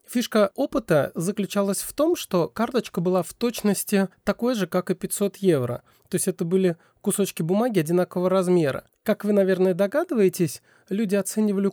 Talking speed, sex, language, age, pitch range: 155 wpm, male, Russian, 30-49, 155-195 Hz